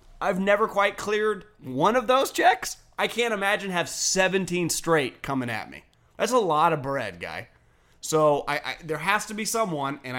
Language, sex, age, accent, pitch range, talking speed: English, male, 30-49, American, 135-180 Hz, 190 wpm